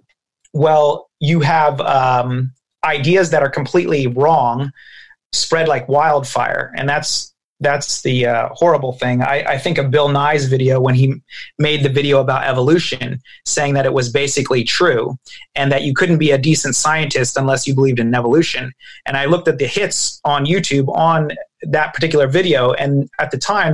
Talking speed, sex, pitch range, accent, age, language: 170 wpm, male, 135-155 Hz, American, 30-49, English